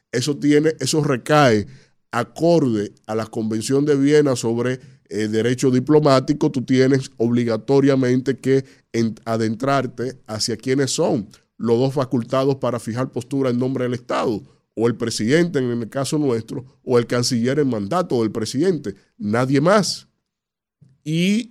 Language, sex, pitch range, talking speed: Spanish, male, 120-145 Hz, 130 wpm